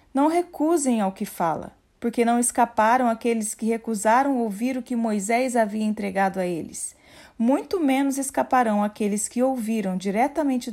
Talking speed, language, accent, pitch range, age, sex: 145 wpm, Portuguese, Brazilian, 205-270 Hz, 40-59, female